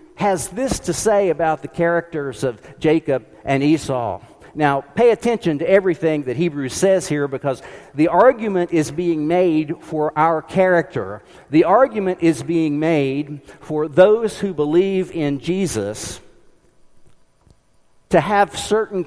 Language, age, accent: English, 50-69, American